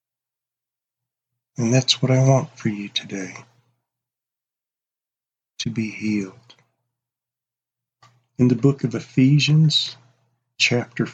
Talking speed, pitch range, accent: 90 wpm, 115-130 Hz, American